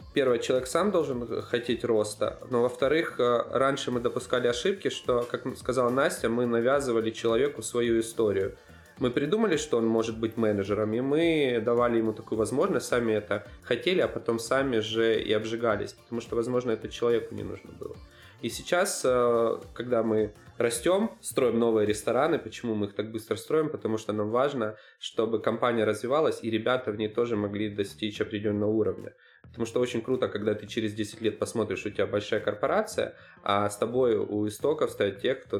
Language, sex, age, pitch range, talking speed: Ukrainian, male, 20-39, 105-120 Hz, 175 wpm